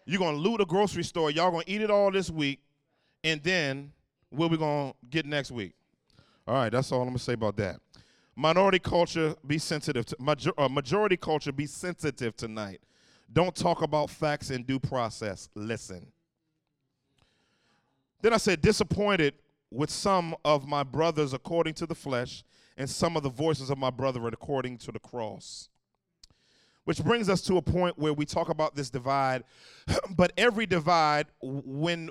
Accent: American